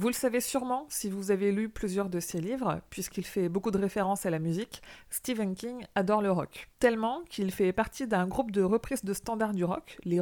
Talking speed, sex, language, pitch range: 225 wpm, female, French, 190-235 Hz